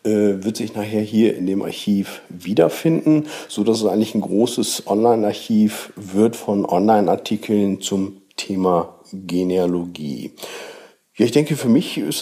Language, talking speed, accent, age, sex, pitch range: German, 130 wpm, German, 50-69, male, 100-130 Hz